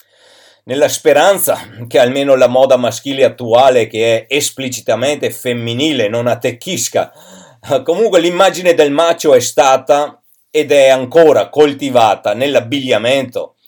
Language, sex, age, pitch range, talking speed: Italian, male, 50-69, 125-165 Hz, 110 wpm